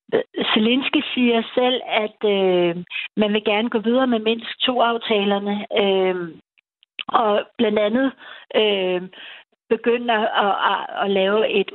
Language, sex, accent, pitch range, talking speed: Danish, female, native, 195-230 Hz, 130 wpm